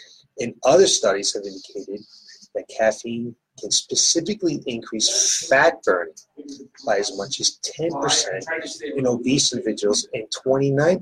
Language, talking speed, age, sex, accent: English, 125 wpm, 30-49, male, American